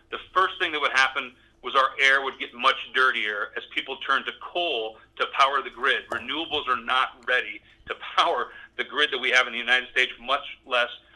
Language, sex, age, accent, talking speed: English, male, 40-59, American, 210 wpm